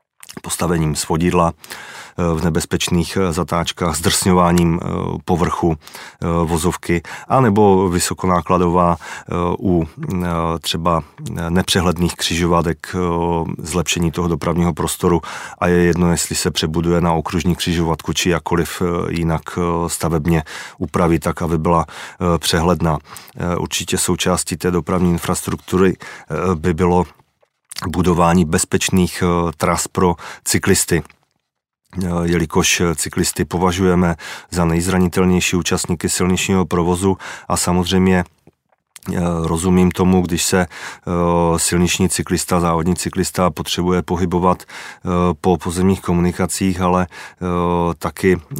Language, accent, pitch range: Czech, native, 85-90 Hz